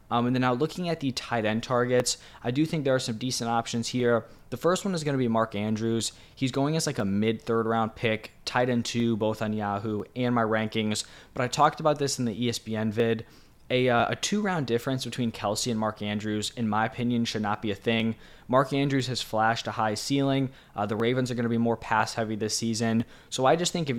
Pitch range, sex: 110-125 Hz, male